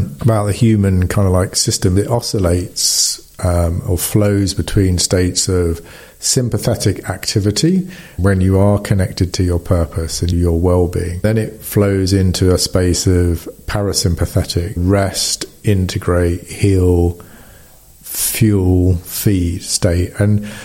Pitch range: 90-105 Hz